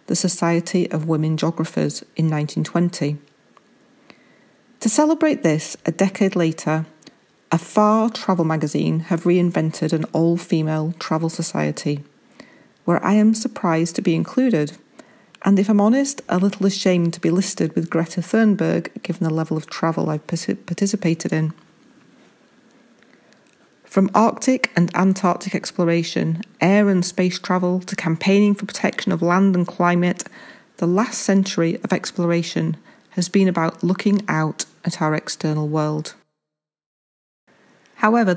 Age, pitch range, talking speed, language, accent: 40-59, 165-205 Hz, 130 wpm, English, British